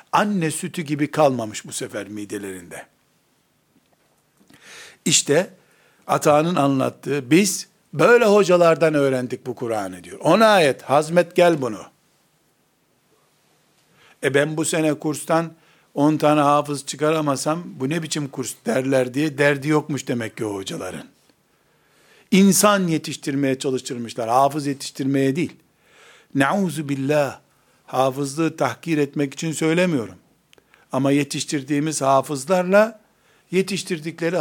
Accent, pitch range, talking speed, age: native, 135-170 Hz, 100 wpm, 60-79